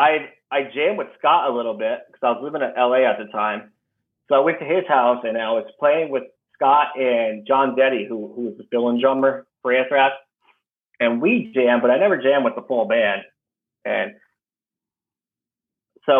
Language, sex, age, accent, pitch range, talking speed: English, male, 30-49, American, 110-135 Hz, 200 wpm